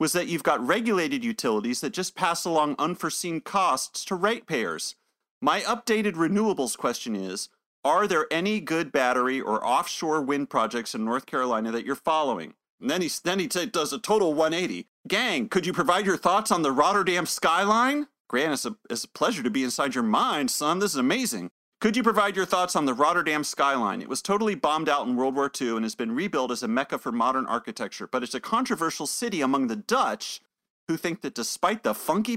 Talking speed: 205 wpm